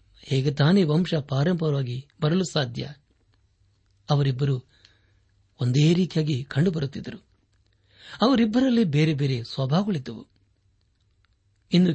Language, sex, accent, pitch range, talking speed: Kannada, male, native, 100-155 Hz, 75 wpm